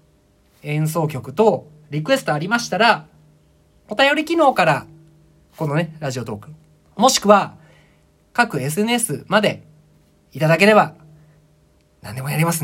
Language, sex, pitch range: Japanese, male, 120-200 Hz